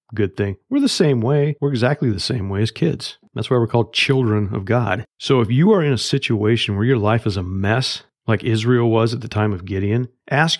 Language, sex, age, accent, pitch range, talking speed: English, male, 40-59, American, 100-125 Hz, 240 wpm